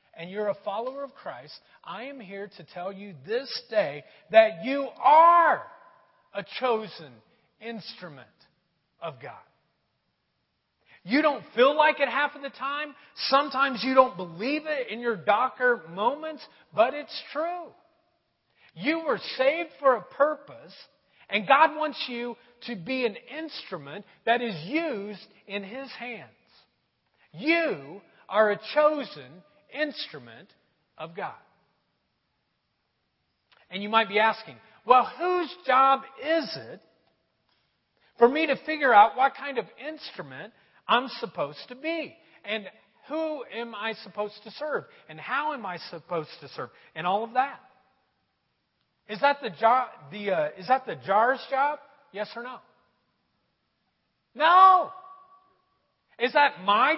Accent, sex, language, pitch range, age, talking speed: American, male, English, 210-305 Hz, 40-59, 135 wpm